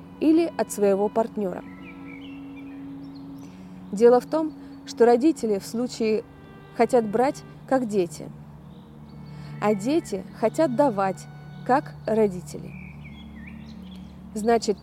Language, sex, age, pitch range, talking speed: Russian, female, 20-39, 165-260 Hz, 90 wpm